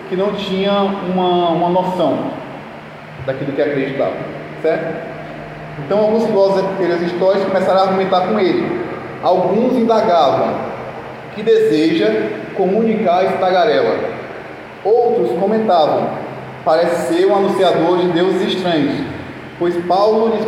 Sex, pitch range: male, 170-210 Hz